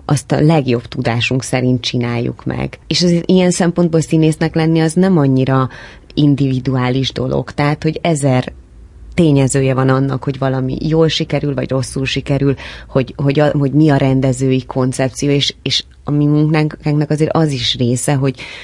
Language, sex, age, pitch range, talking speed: Hungarian, female, 20-39, 120-150 Hz, 160 wpm